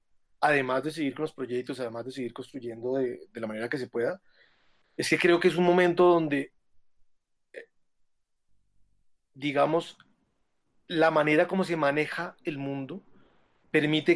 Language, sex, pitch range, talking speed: Spanish, male, 140-165 Hz, 145 wpm